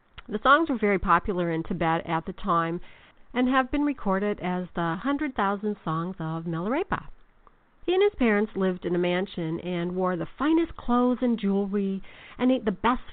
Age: 50-69